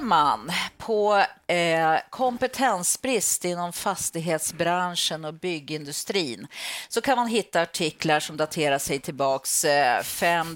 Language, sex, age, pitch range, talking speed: Swedish, female, 40-59, 155-210 Hz, 110 wpm